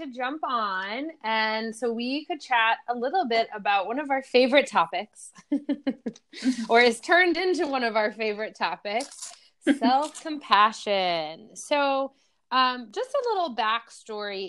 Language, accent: English, American